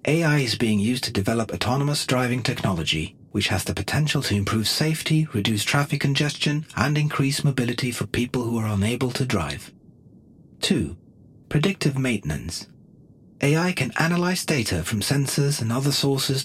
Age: 40-59